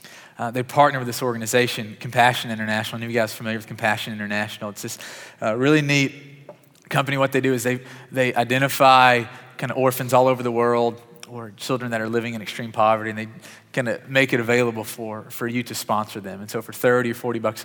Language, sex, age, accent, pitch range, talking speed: English, male, 30-49, American, 110-130 Hz, 220 wpm